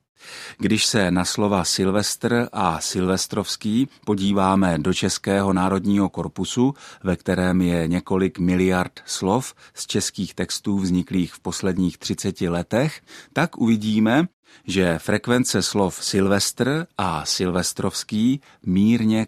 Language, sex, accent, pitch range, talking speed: Czech, male, native, 90-115 Hz, 110 wpm